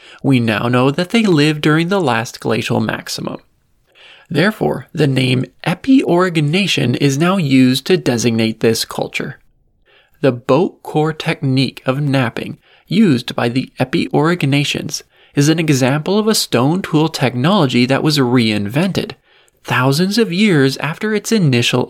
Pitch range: 130-175 Hz